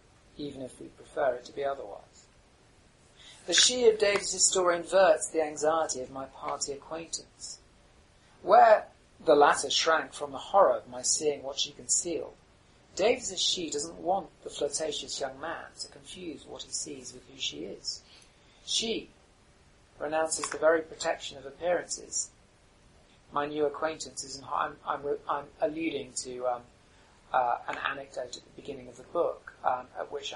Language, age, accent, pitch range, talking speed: English, 40-59, British, 135-165 Hz, 155 wpm